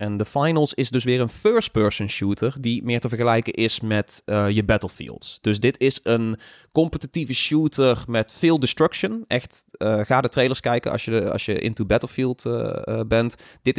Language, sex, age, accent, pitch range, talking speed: Dutch, male, 20-39, Dutch, 105-125 Hz, 185 wpm